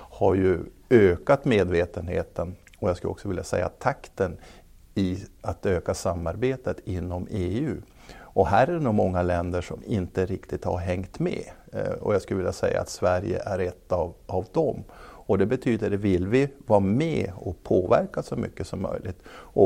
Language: Swedish